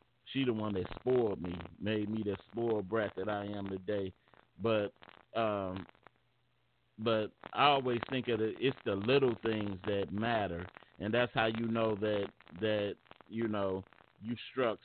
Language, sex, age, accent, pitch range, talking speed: English, male, 40-59, American, 95-115 Hz, 160 wpm